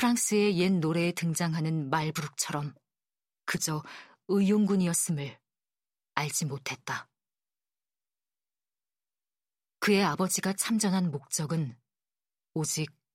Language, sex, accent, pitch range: Korean, female, native, 150-190 Hz